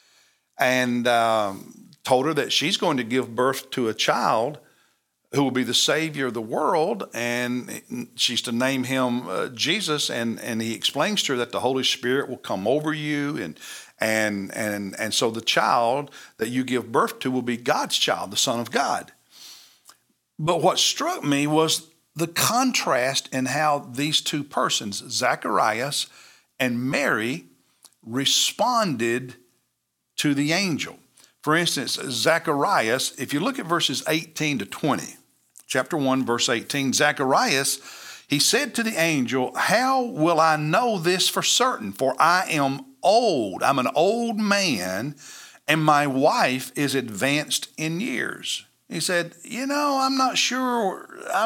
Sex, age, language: male, 60-79, English